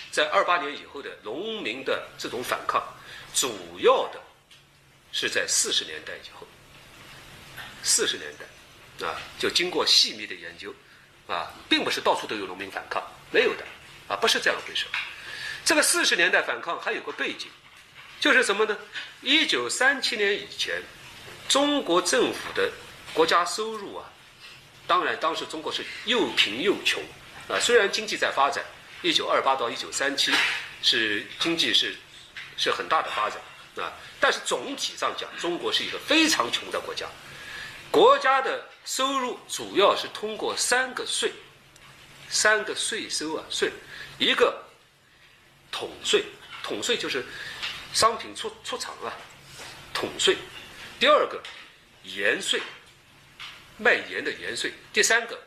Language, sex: Chinese, male